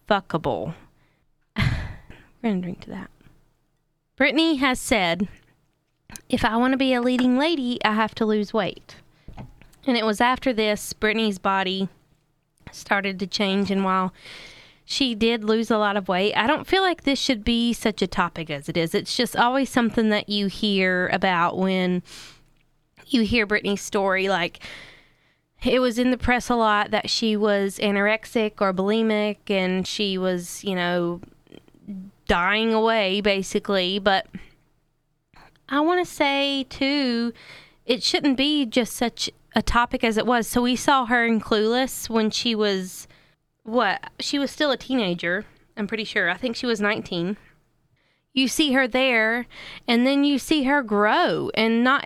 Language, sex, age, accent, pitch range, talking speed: English, female, 20-39, American, 195-250 Hz, 160 wpm